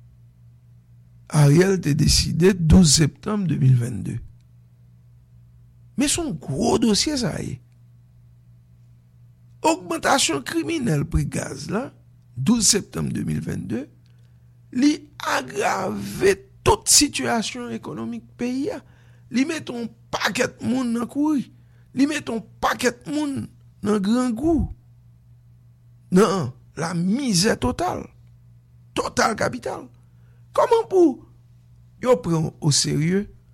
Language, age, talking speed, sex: English, 60-79, 95 wpm, male